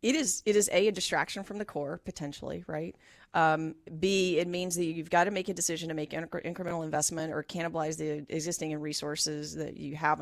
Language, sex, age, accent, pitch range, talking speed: English, female, 30-49, American, 155-195 Hz, 210 wpm